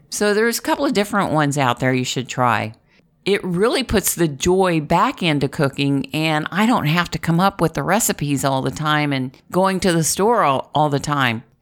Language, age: English, 50-69